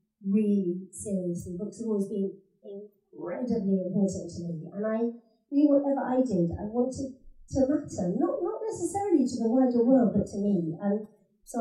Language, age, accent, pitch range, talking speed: English, 40-59, British, 185-225 Hz, 170 wpm